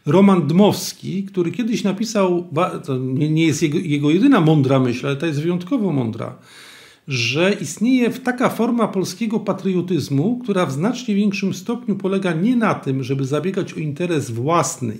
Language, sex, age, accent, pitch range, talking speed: Polish, male, 50-69, native, 165-215 Hz, 150 wpm